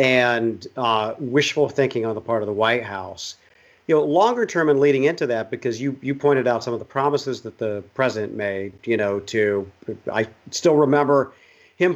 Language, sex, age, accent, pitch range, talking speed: English, male, 40-59, American, 120-150 Hz, 195 wpm